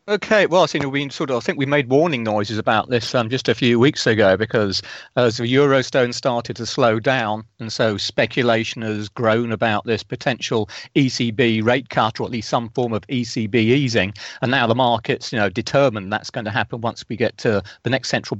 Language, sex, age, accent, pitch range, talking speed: English, male, 40-59, British, 110-135 Hz, 230 wpm